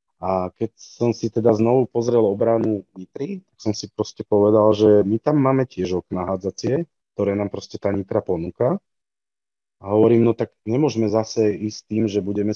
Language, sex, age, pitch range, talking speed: Slovak, male, 30-49, 105-120 Hz, 175 wpm